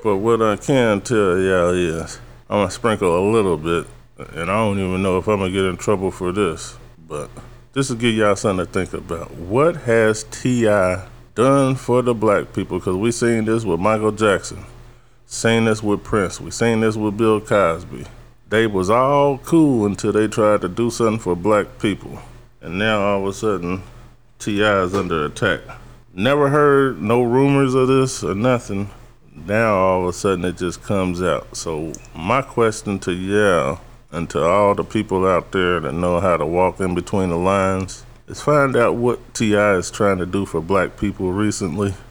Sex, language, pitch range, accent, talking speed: male, English, 95-120 Hz, American, 190 wpm